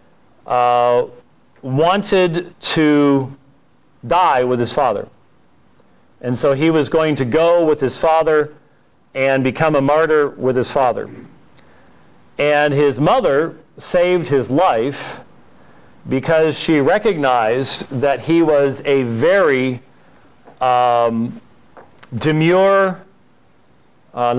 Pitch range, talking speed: 120-155 Hz, 100 wpm